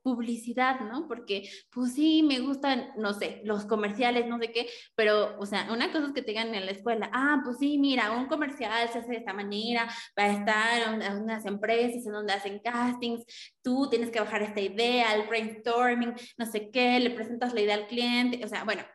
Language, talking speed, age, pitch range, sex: Spanish, 215 wpm, 20-39, 205-240 Hz, female